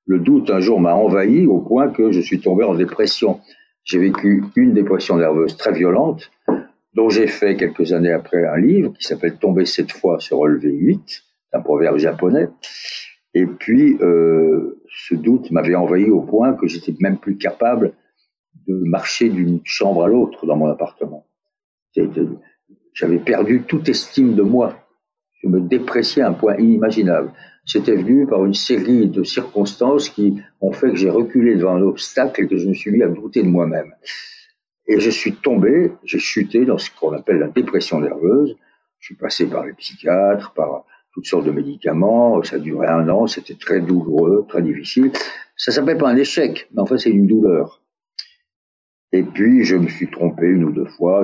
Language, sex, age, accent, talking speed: French, male, 60-79, French, 185 wpm